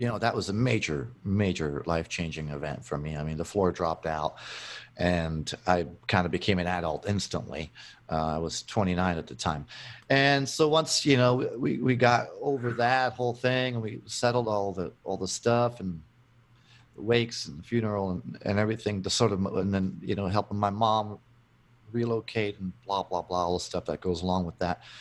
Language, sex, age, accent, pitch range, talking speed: English, male, 40-59, American, 95-120 Hz, 205 wpm